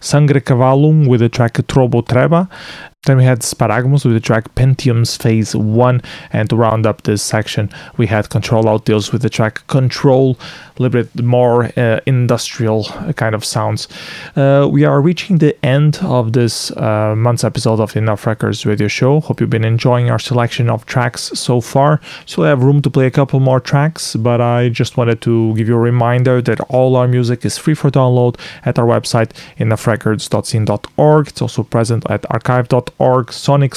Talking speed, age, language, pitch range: 185 wpm, 30-49, English, 115-140 Hz